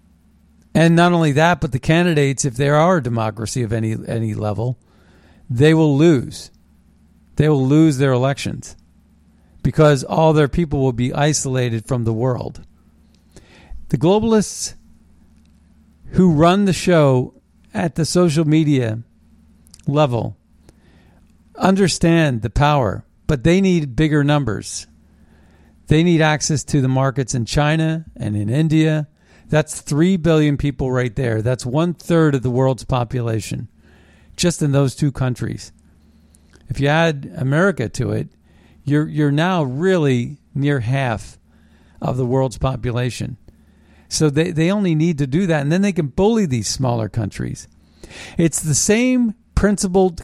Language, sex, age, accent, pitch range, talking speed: English, male, 50-69, American, 100-160 Hz, 140 wpm